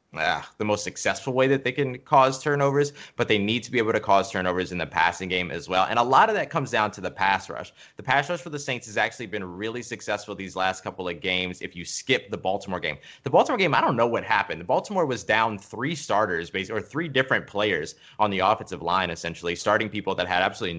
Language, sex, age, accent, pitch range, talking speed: English, male, 20-39, American, 95-125 Hz, 245 wpm